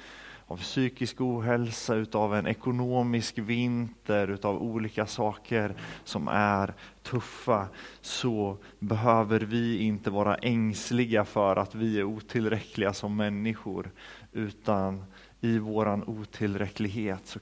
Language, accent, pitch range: Swedish, native, 105-135 Hz